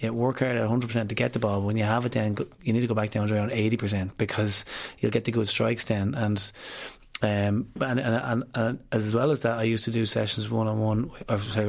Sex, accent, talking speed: male, Irish, 240 wpm